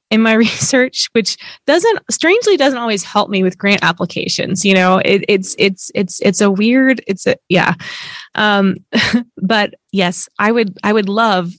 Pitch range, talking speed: 180-210 Hz, 165 wpm